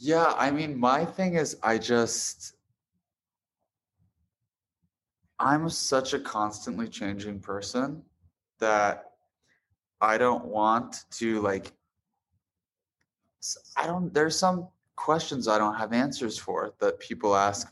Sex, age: male, 20-39